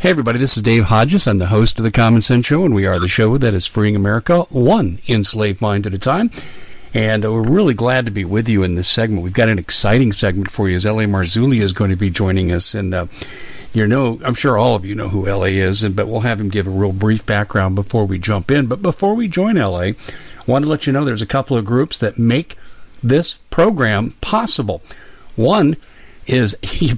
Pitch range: 105-130 Hz